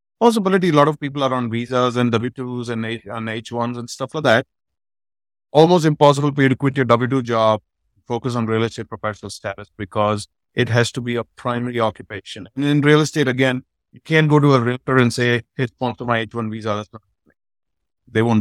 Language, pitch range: English, 110-135 Hz